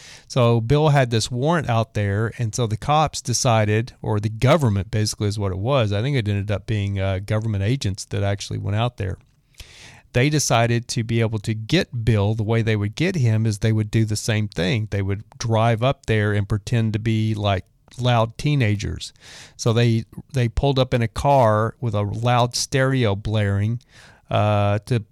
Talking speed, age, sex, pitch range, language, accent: 195 wpm, 40-59, male, 110-130 Hz, English, American